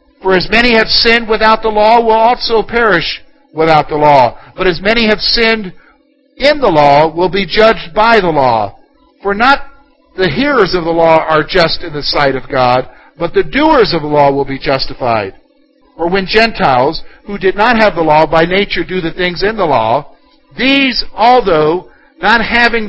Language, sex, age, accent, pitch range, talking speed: English, male, 60-79, American, 160-225 Hz, 190 wpm